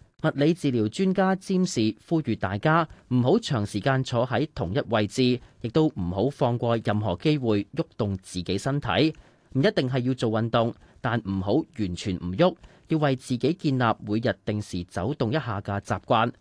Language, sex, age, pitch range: Chinese, male, 30-49, 110-155 Hz